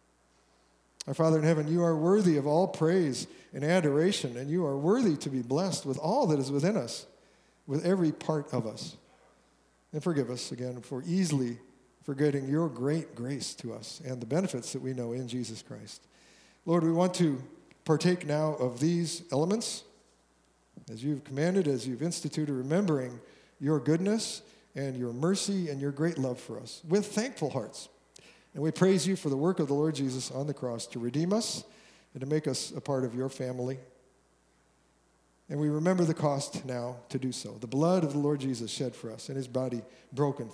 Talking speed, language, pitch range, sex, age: 190 wpm, English, 125-165 Hz, male, 50-69